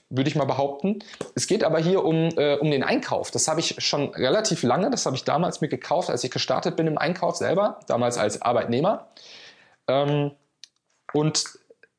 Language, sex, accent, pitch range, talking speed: German, male, German, 135-175 Hz, 185 wpm